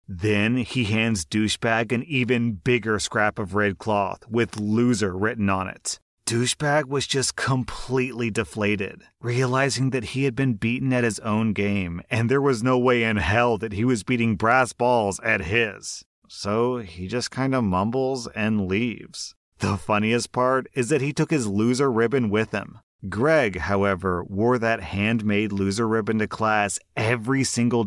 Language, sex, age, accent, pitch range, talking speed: English, male, 30-49, American, 100-125 Hz, 165 wpm